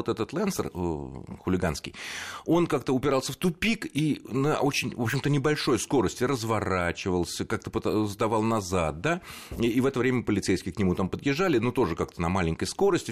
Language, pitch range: Russian, 80-130 Hz